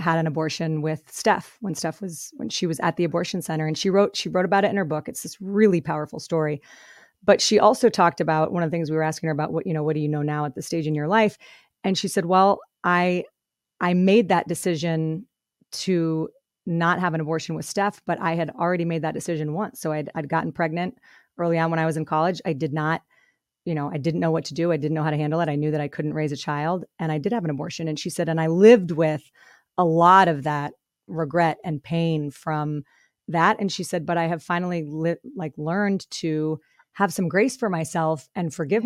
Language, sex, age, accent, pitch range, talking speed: English, female, 30-49, American, 160-190 Hz, 245 wpm